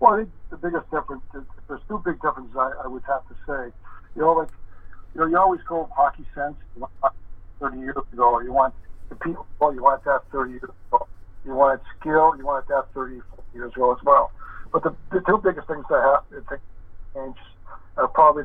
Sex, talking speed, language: male, 230 wpm, English